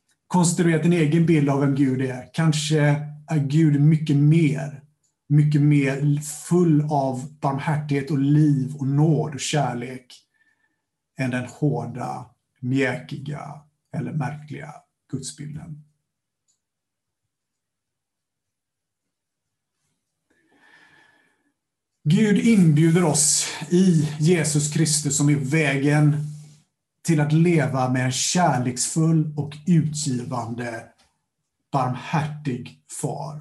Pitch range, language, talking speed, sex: 135-155 Hz, Swedish, 90 wpm, male